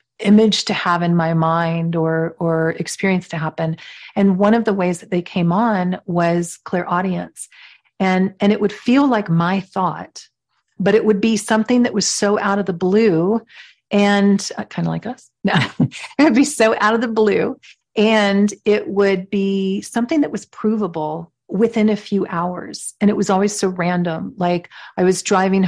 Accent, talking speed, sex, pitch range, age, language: American, 180 wpm, female, 175-215 Hz, 40-59, English